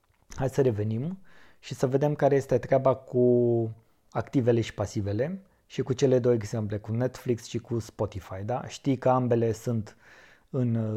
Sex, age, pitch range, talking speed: male, 20-39, 115-135 Hz, 160 wpm